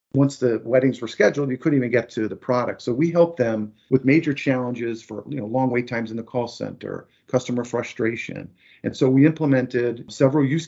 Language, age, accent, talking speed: English, 50-69, American, 210 wpm